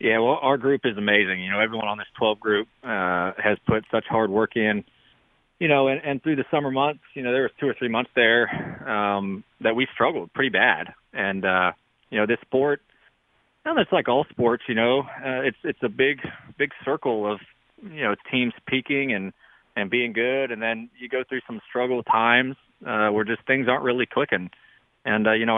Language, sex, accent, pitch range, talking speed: English, male, American, 105-130 Hz, 215 wpm